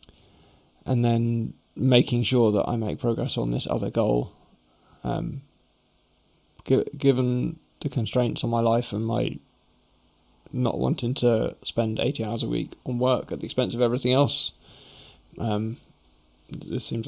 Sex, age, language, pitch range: male, 20-39, English, 95-120 Hz